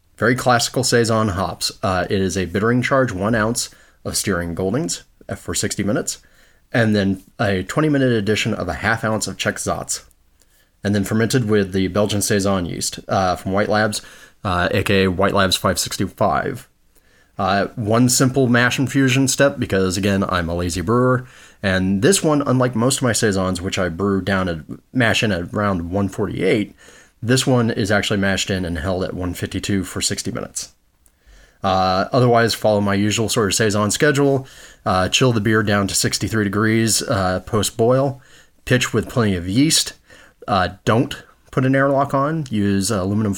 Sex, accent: male, American